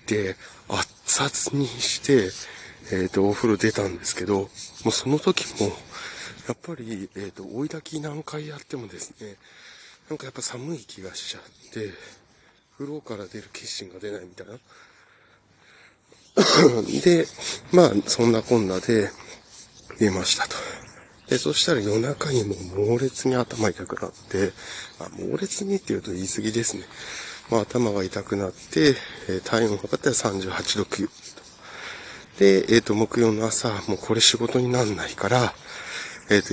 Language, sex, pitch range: Japanese, male, 100-145 Hz